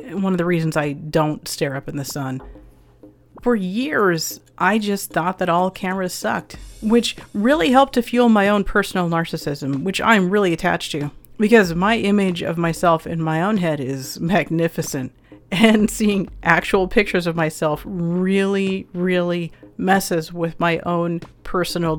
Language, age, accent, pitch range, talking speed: English, 40-59, American, 155-195 Hz, 160 wpm